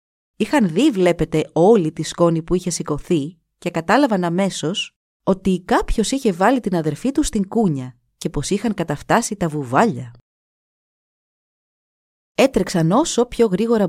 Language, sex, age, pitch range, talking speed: Greek, female, 30-49, 155-225 Hz, 135 wpm